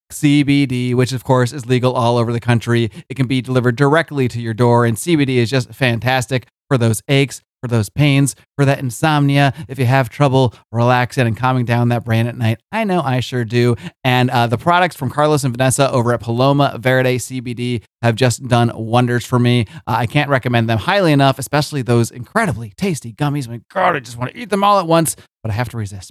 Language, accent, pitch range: English, American, 125-165 Hz